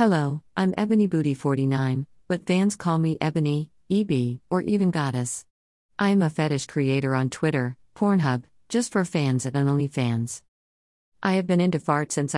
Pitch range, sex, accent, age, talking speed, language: 130-160 Hz, female, American, 50-69, 160 wpm, English